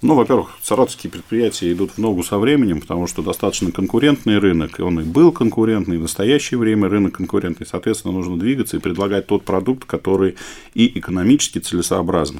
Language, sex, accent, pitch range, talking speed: Russian, male, native, 85-105 Hz, 175 wpm